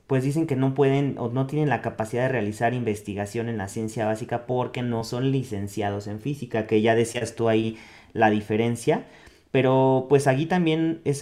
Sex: male